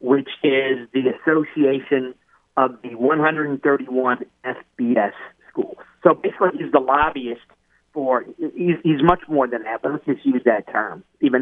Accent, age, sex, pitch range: American, 50-69, male, 135-180 Hz